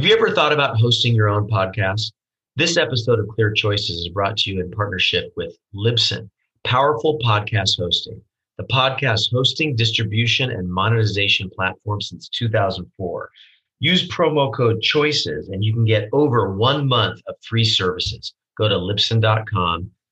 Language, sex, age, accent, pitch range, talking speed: English, male, 30-49, American, 105-130 Hz, 150 wpm